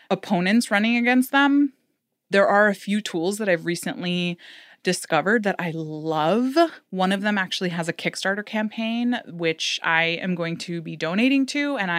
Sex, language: female, English